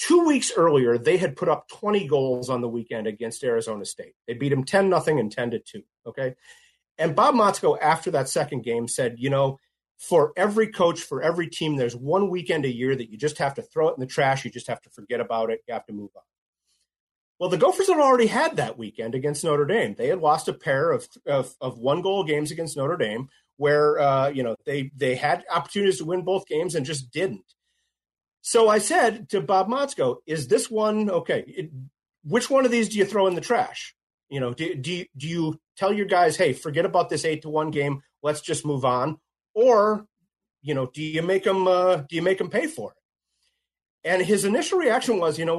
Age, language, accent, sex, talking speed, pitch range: 30-49, English, American, male, 220 wpm, 140-205 Hz